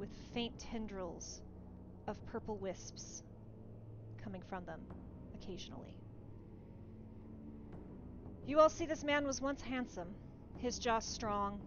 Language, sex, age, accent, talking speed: English, female, 30-49, American, 110 wpm